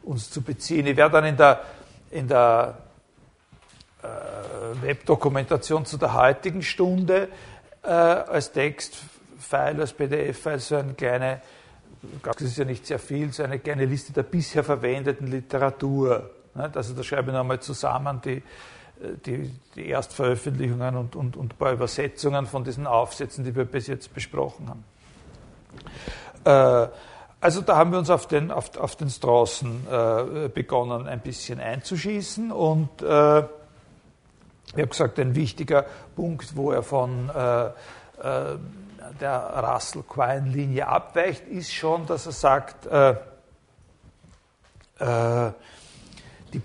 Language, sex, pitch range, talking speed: German, male, 130-160 Hz, 135 wpm